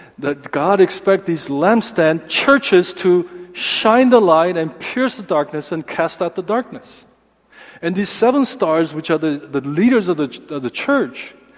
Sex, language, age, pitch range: male, Korean, 50-69, 155-220 Hz